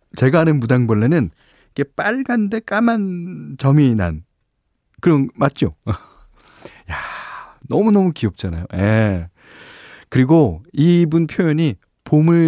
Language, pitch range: Korean, 95-140 Hz